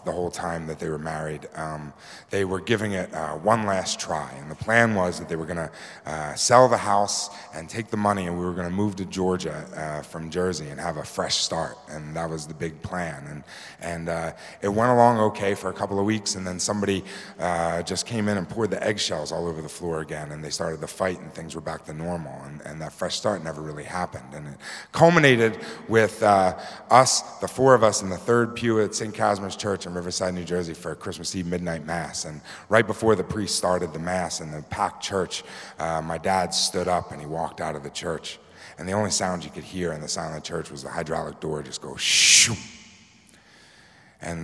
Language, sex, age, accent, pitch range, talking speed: English, male, 30-49, American, 80-100 Hz, 230 wpm